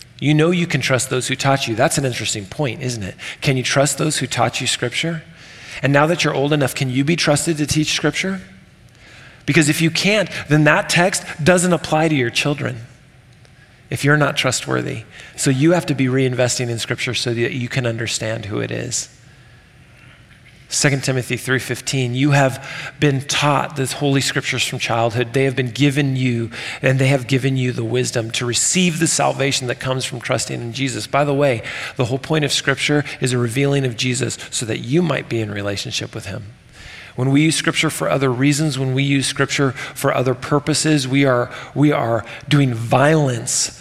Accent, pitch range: American, 125-150 Hz